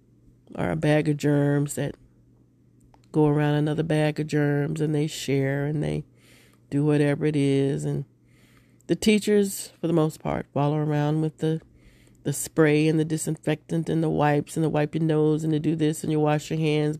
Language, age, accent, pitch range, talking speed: English, 30-49, American, 130-155 Hz, 185 wpm